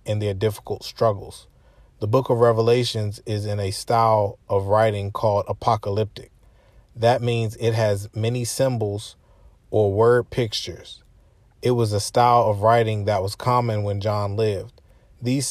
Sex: male